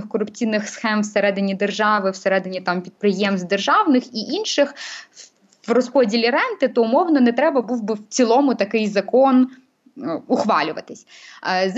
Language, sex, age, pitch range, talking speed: Ukrainian, female, 20-39, 205-255 Hz, 120 wpm